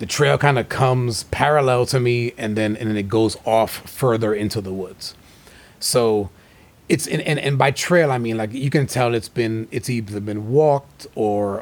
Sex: male